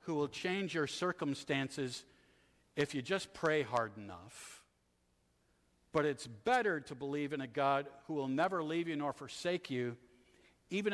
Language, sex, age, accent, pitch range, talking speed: English, male, 50-69, American, 135-185 Hz, 155 wpm